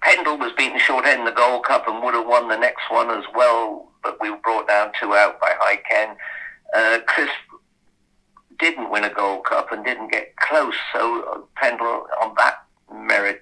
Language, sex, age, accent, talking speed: English, male, 50-69, British, 195 wpm